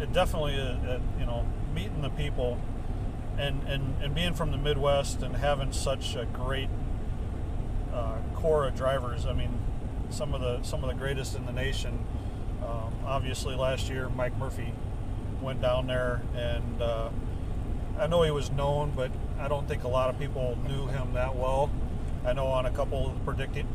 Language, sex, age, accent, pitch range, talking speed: English, male, 40-59, American, 105-130 Hz, 180 wpm